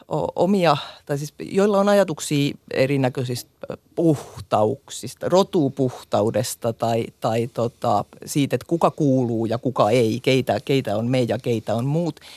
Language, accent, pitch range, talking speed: Finnish, native, 135-175 Hz, 125 wpm